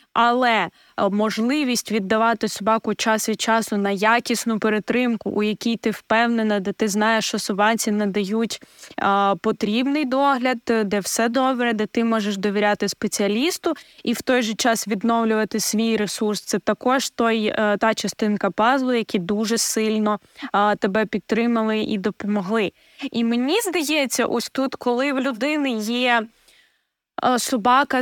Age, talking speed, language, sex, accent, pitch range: 20-39, 135 wpm, Ukrainian, female, native, 215-250 Hz